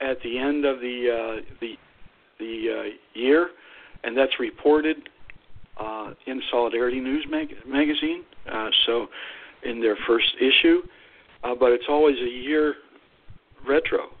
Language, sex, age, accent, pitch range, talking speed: English, male, 60-79, American, 110-145 Hz, 135 wpm